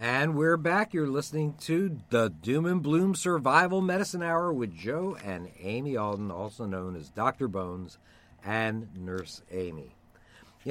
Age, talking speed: 50-69, 150 wpm